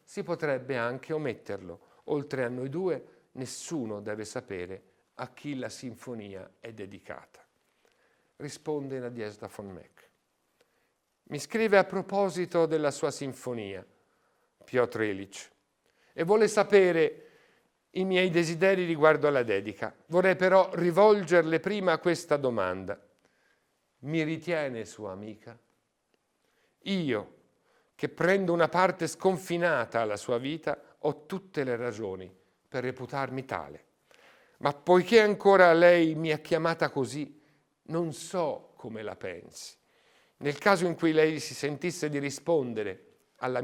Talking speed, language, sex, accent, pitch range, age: 120 wpm, Italian, male, native, 120-170 Hz, 50-69